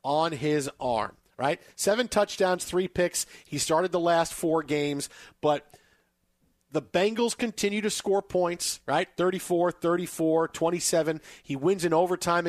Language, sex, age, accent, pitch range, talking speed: English, male, 50-69, American, 155-190 Hz, 140 wpm